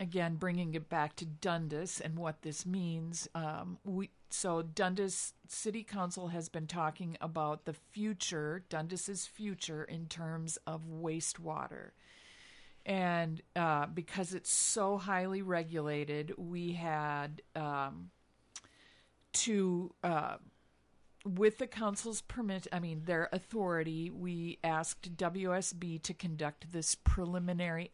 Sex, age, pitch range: female, 50-69, 160-185 Hz